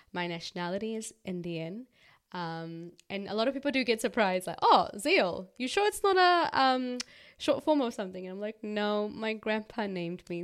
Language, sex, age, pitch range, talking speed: English, female, 20-39, 180-235 Hz, 195 wpm